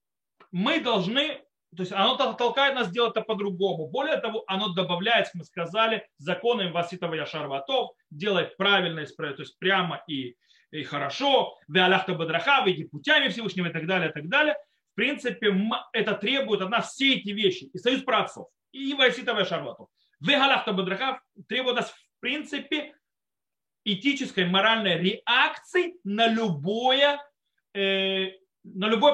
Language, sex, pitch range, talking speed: Russian, male, 185-260 Hz, 135 wpm